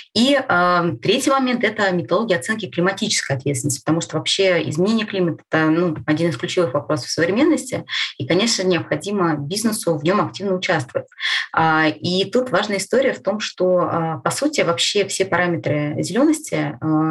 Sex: female